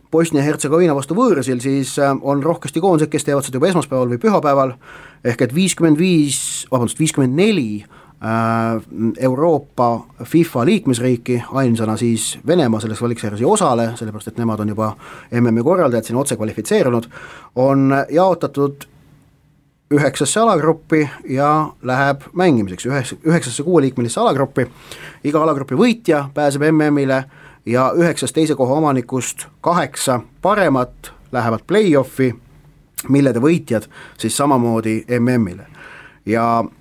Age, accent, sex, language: 30-49, Finnish, male, English